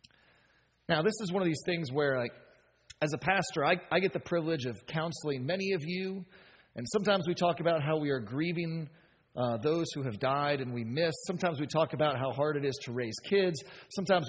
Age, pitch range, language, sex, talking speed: 40-59, 135-195 Hz, English, male, 210 wpm